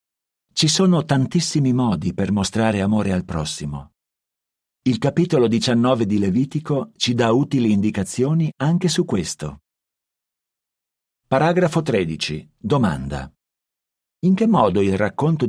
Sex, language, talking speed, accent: male, Italian, 110 wpm, native